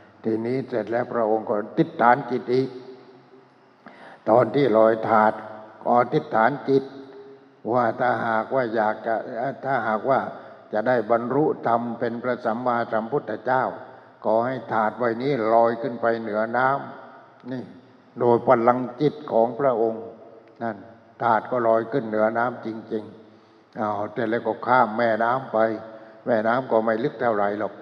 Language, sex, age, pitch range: English, male, 60-79, 110-120 Hz